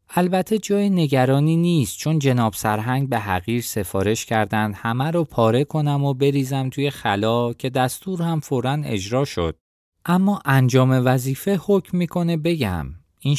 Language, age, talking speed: Persian, 20-39, 145 wpm